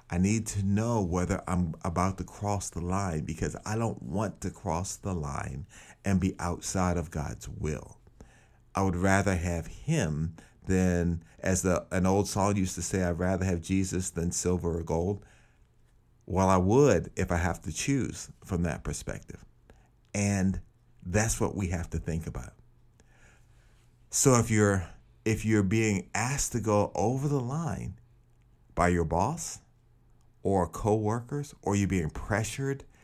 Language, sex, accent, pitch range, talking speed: English, male, American, 90-115 Hz, 160 wpm